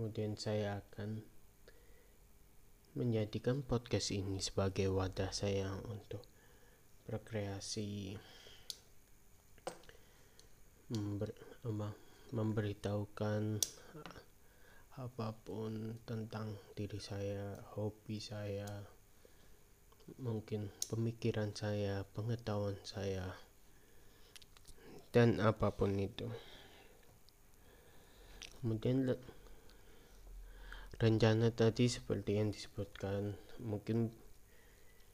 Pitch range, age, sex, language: 100-110 Hz, 20-39, male, Indonesian